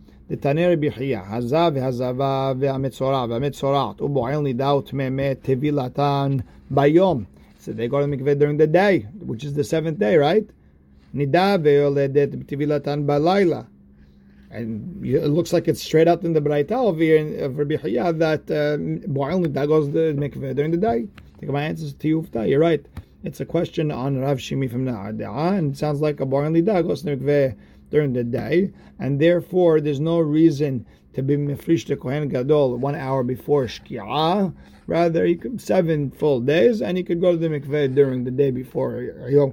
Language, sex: English, male